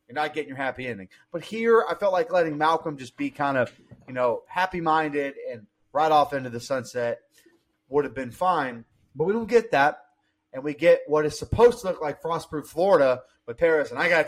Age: 30-49